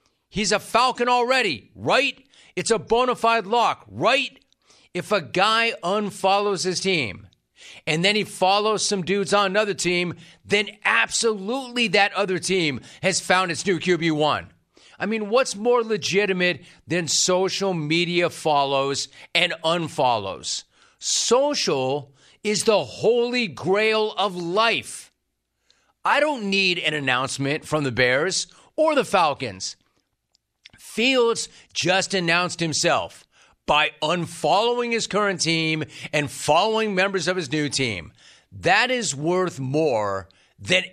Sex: male